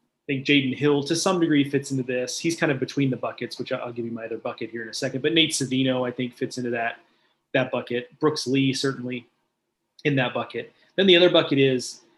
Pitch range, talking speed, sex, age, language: 130-150 Hz, 235 wpm, male, 30-49, English